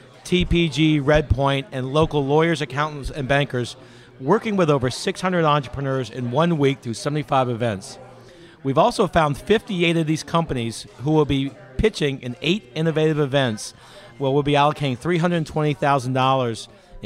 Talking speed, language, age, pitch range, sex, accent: 135 wpm, English, 50-69, 135-165 Hz, male, American